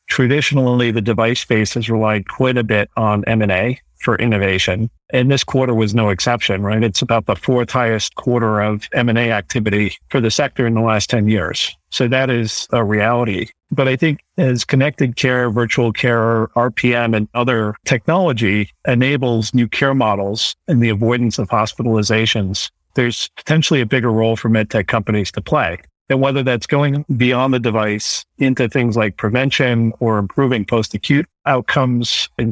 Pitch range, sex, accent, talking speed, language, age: 110-130 Hz, male, American, 165 wpm, English, 50-69